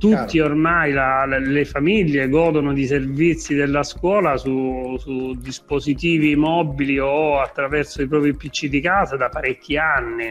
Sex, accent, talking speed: male, native, 145 wpm